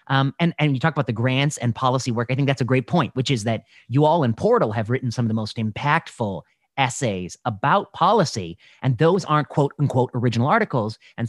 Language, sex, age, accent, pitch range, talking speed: English, male, 30-49, American, 130-195 Hz, 225 wpm